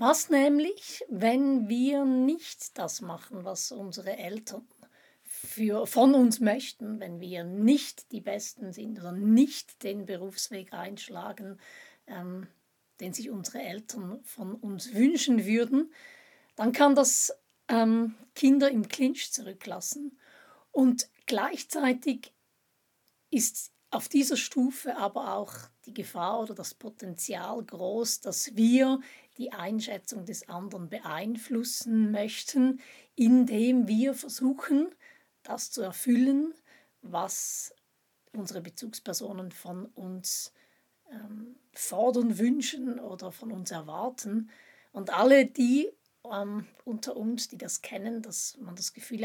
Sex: female